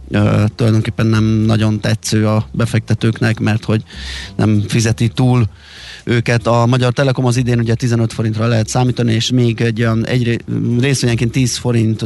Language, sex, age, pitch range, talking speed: Hungarian, male, 30-49, 110-125 Hz, 150 wpm